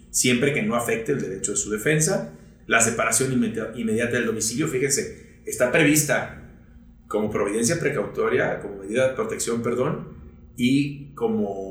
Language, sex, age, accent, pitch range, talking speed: Spanish, male, 30-49, Mexican, 100-135 Hz, 140 wpm